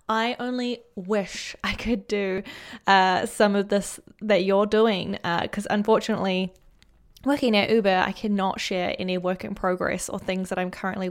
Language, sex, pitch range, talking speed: English, female, 190-225 Hz, 165 wpm